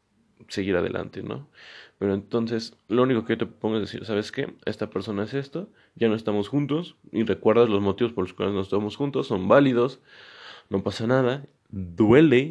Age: 20-39